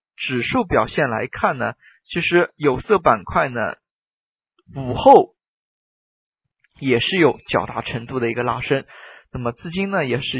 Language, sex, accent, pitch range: Chinese, male, native, 125-180 Hz